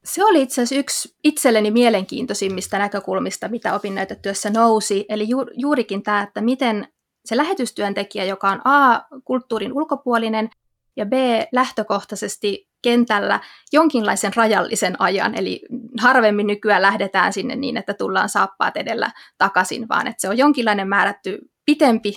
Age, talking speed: 20-39, 130 wpm